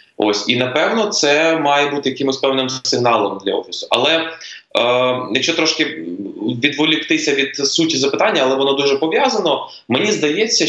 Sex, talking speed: male, 140 wpm